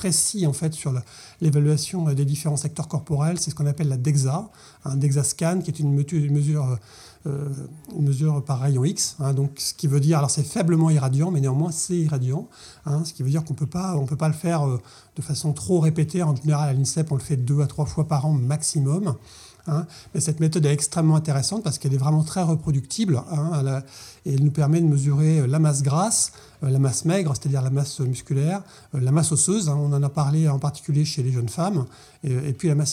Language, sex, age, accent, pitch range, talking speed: French, male, 30-49, French, 140-160 Hz, 225 wpm